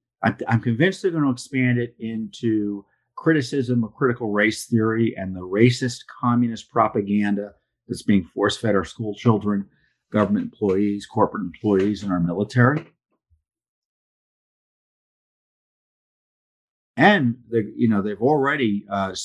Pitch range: 100-130 Hz